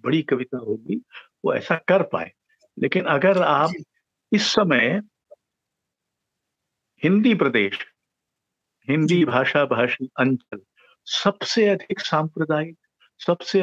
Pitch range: 145-195 Hz